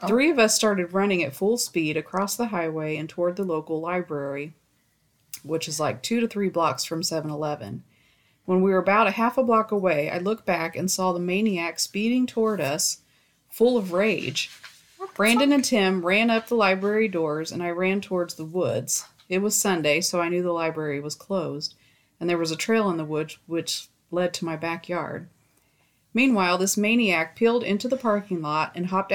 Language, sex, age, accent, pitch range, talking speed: English, female, 40-59, American, 160-200 Hz, 195 wpm